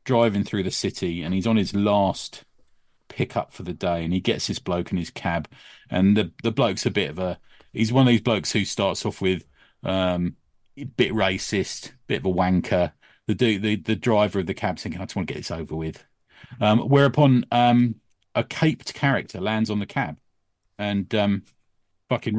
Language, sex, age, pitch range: English, male, 40-59, 95-120 Hz